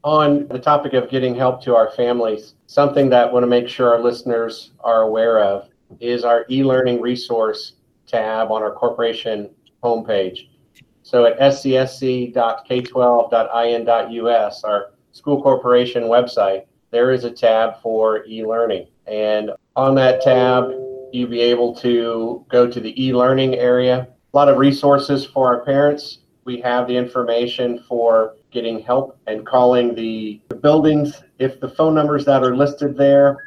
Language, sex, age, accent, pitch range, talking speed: English, male, 40-59, American, 115-135 Hz, 145 wpm